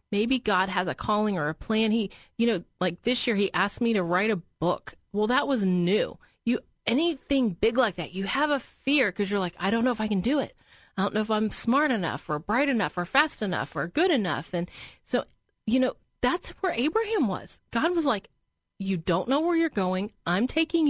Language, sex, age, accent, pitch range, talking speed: English, female, 30-49, American, 185-255 Hz, 230 wpm